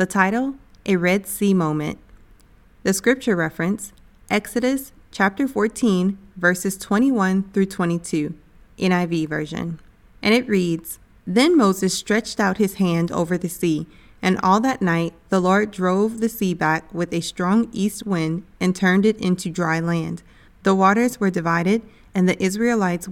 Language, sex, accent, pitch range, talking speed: English, female, American, 170-210 Hz, 150 wpm